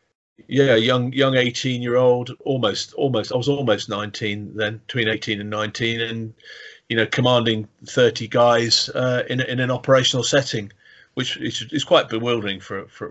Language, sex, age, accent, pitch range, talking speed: English, male, 40-59, British, 105-125 Hz, 155 wpm